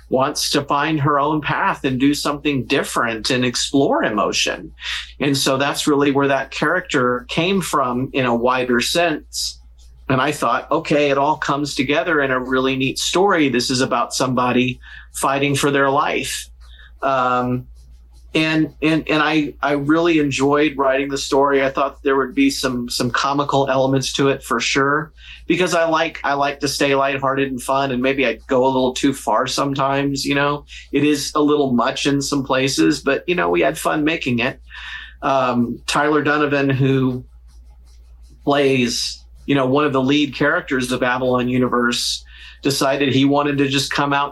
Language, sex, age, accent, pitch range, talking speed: English, male, 40-59, American, 130-150 Hz, 175 wpm